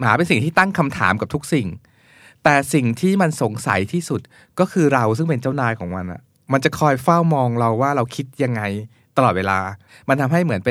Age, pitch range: 20-39, 115-145 Hz